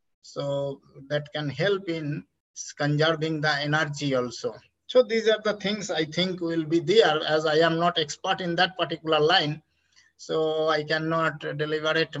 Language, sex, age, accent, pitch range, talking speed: English, male, 50-69, Indian, 150-185 Hz, 155 wpm